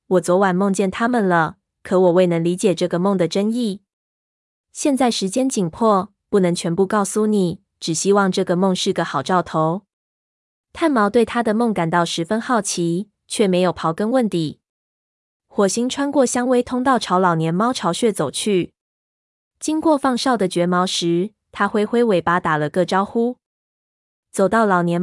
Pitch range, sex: 175-220 Hz, female